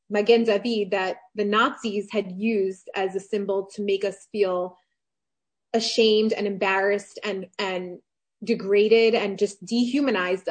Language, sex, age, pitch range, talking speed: English, female, 20-39, 200-230 Hz, 125 wpm